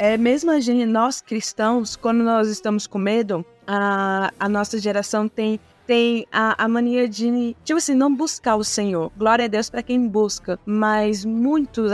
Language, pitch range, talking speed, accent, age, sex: Portuguese, 210-250 Hz, 175 wpm, Brazilian, 20-39, female